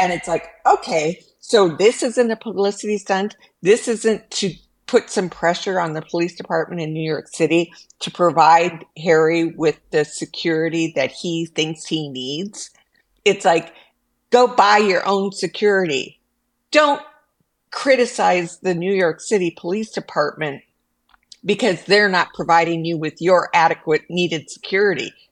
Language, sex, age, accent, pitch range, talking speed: English, female, 50-69, American, 165-220 Hz, 140 wpm